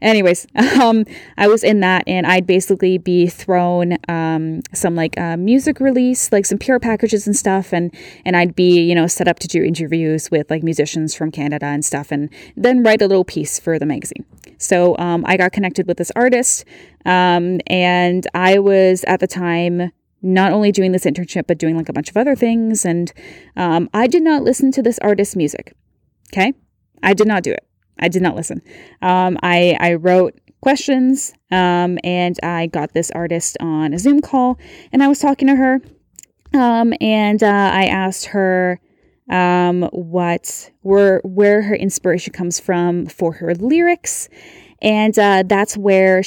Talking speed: 180 wpm